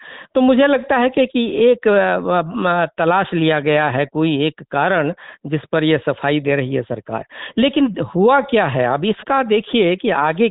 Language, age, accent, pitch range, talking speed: Hindi, 60-79, native, 155-220 Hz, 170 wpm